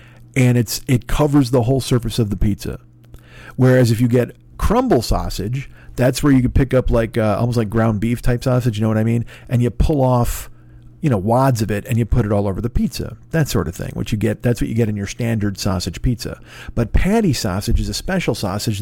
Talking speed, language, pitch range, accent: 240 wpm, English, 105-140 Hz, American